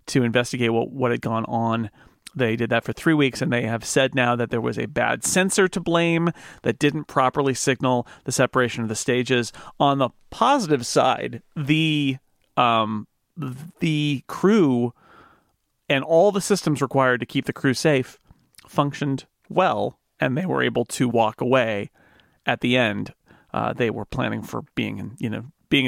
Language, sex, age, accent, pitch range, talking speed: English, male, 40-59, American, 120-145 Hz, 175 wpm